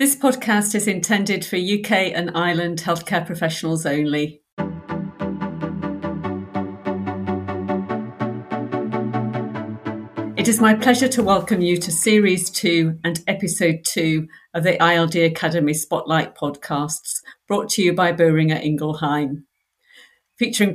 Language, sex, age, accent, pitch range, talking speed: English, female, 50-69, British, 160-190 Hz, 105 wpm